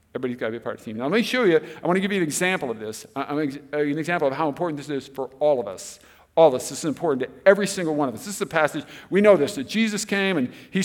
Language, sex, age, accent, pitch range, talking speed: English, male, 50-69, American, 155-225 Hz, 325 wpm